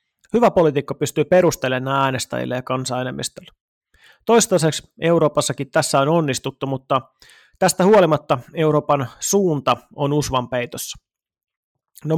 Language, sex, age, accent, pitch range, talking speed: Finnish, male, 30-49, native, 135-165 Hz, 100 wpm